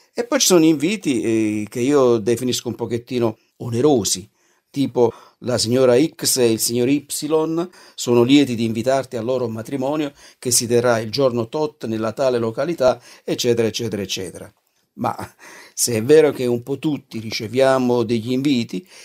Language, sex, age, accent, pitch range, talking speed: Italian, male, 50-69, native, 115-140 Hz, 160 wpm